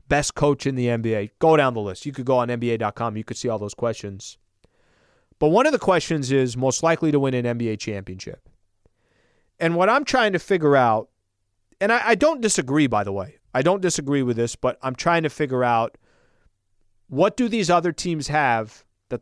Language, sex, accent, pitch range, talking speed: English, male, American, 115-165 Hz, 205 wpm